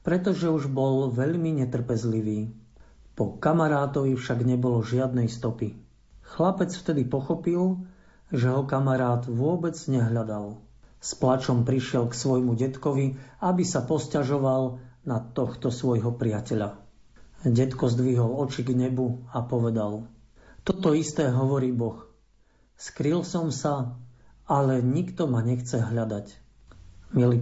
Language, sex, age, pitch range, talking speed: Slovak, male, 50-69, 120-145 Hz, 115 wpm